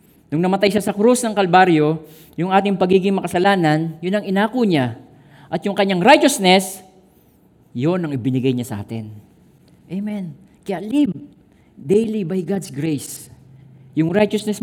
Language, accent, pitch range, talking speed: Filipino, native, 135-190 Hz, 140 wpm